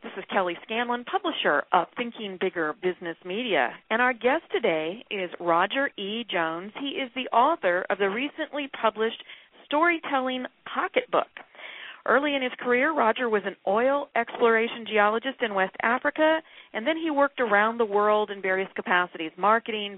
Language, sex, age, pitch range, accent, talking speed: English, female, 40-59, 185-245 Hz, American, 155 wpm